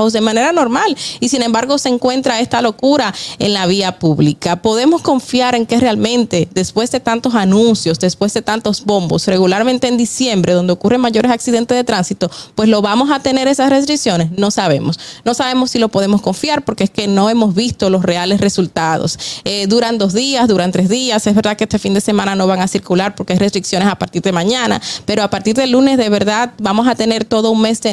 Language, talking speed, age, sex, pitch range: Spanish, 215 wpm, 20-39, female, 190-230 Hz